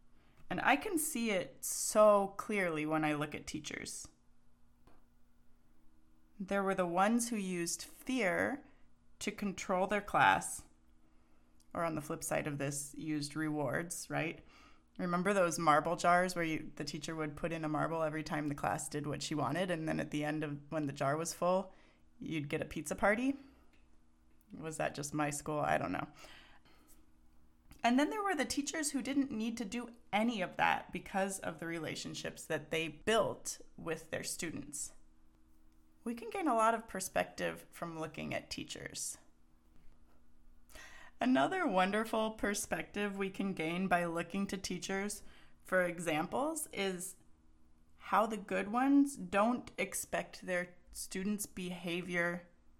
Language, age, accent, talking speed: English, 30-49, American, 150 wpm